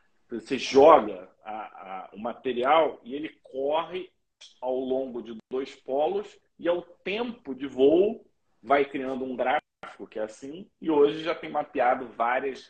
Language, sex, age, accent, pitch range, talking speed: Portuguese, male, 40-59, Brazilian, 130-205 Hz, 140 wpm